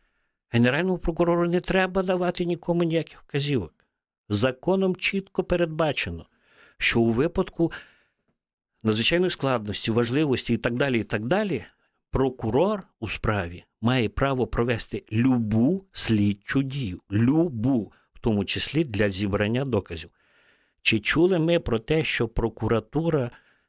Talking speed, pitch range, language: 115 wpm, 100-130 Hz, Ukrainian